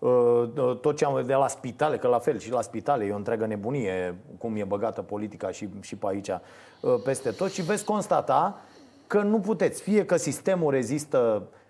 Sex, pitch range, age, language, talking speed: male, 115-180 Hz, 30-49, Romanian, 190 wpm